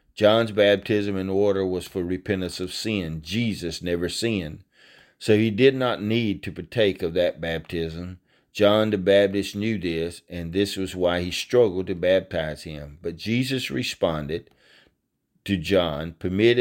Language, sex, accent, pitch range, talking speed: English, male, American, 85-110 Hz, 150 wpm